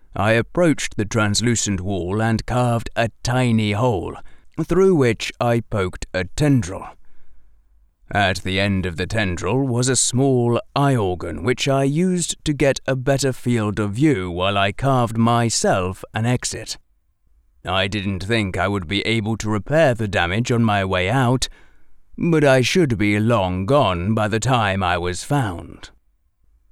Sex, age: male, 30-49